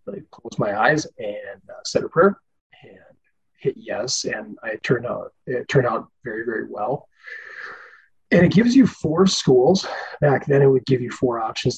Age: 30-49